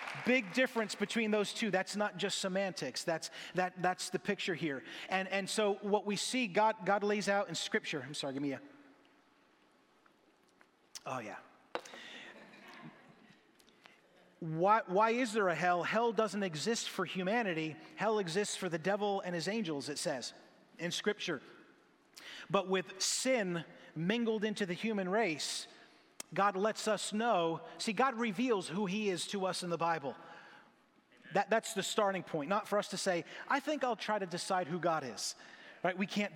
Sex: male